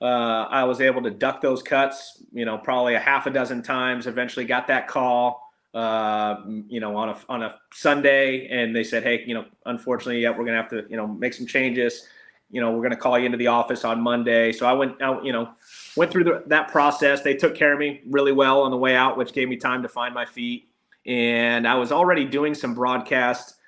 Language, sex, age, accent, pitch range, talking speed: English, male, 30-49, American, 120-135 Hz, 240 wpm